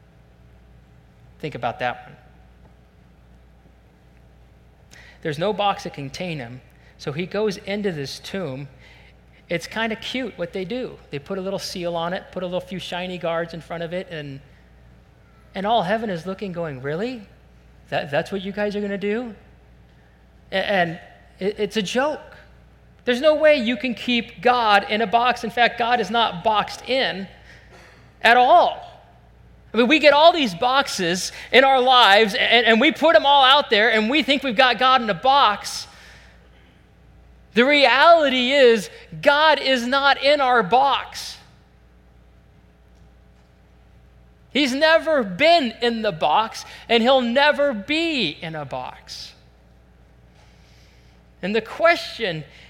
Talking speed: 150 wpm